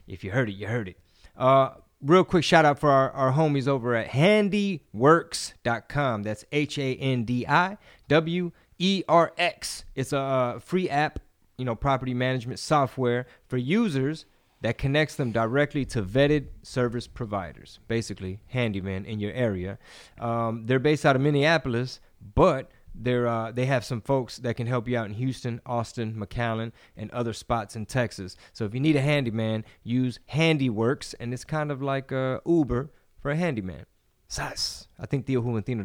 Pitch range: 115-150 Hz